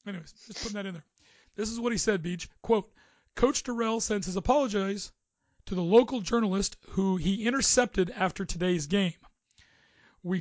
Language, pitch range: English, 185-220 Hz